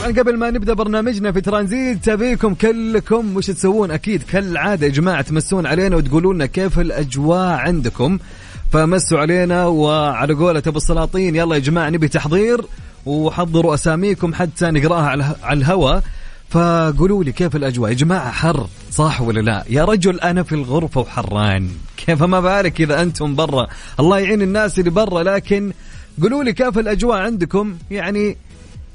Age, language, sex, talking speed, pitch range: 30-49, English, male, 140 wpm, 125-180 Hz